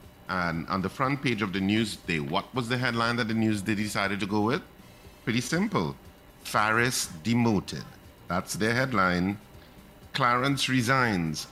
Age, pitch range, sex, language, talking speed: 50-69, 95-120 Hz, male, English, 155 wpm